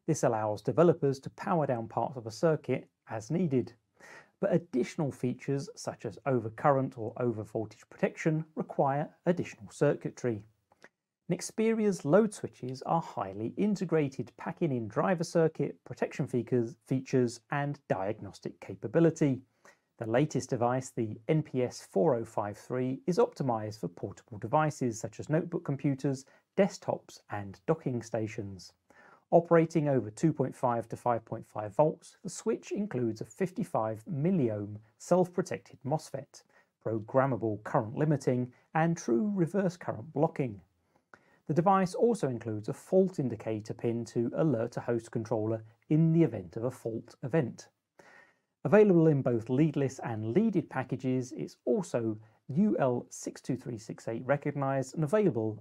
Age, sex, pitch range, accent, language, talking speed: 40-59, male, 115-160 Hz, British, English, 120 wpm